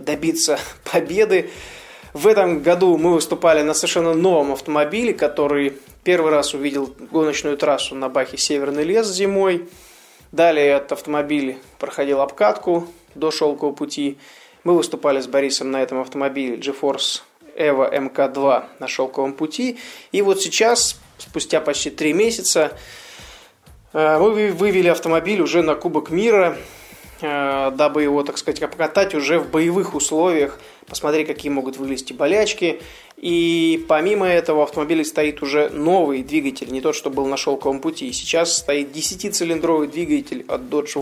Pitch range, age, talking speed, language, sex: 145-175 Hz, 20-39, 135 wpm, Russian, male